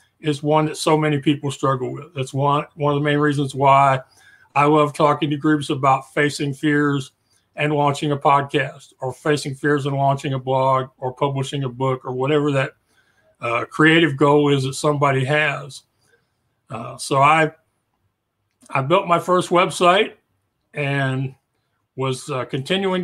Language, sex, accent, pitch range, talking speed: English, male, American, 135-155 Hz, 160 wpm